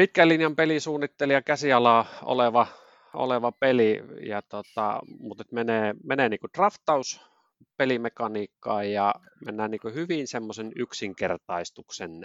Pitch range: 95-125 Hz